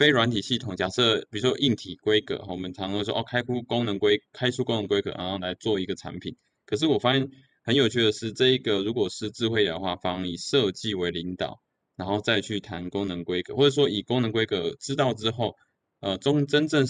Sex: male